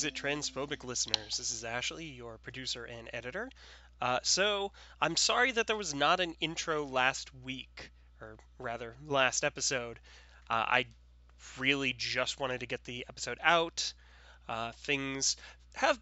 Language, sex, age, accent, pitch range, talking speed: English, male, 20-39, American, 115-160 Hz, 140 wpm